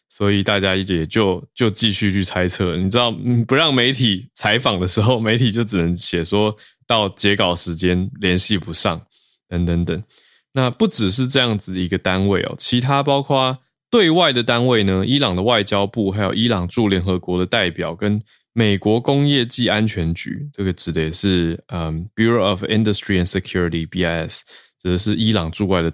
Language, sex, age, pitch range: Chinese, male, 20-39, 90-115 Hz